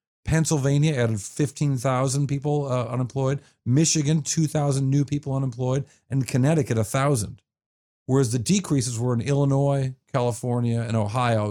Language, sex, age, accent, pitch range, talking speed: English, male, 50-69, American, 110-140 Hz, 120 wpm